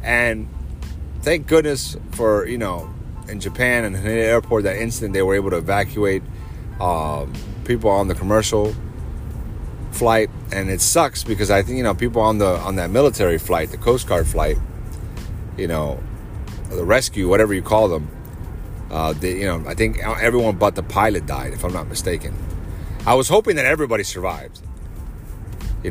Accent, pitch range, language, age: American, 85-110 Hz, English, 30-49